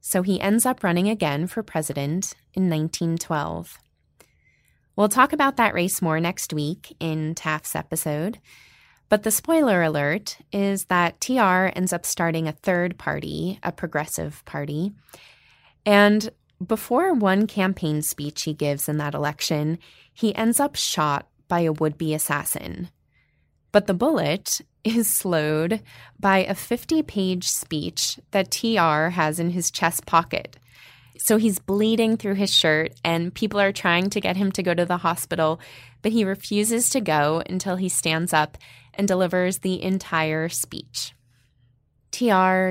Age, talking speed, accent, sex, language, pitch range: 20-39, 145 wpm, American, female, English, 155-200 Hz